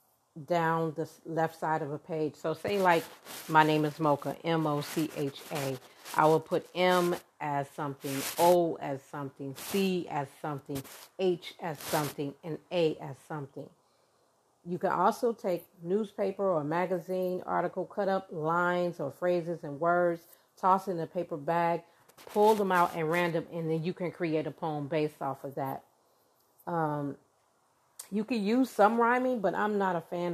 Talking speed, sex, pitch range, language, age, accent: 160 wpm, female, 150-175 Hz, English, 40-59, American